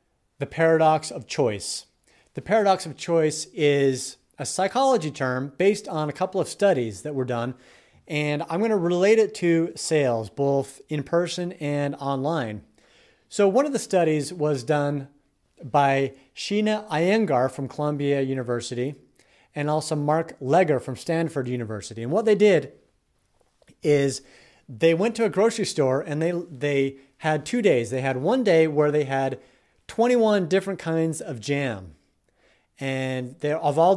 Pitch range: 135-170 Hz